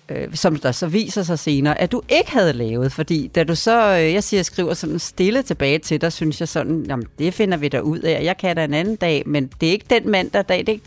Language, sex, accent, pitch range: Danish, female, native, 150-195 Hz